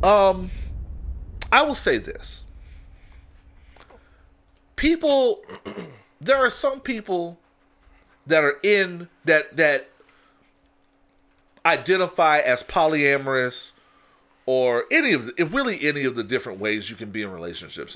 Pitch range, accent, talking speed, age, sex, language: 110-170 Hz, American, 110 wpm, 40-59, male, English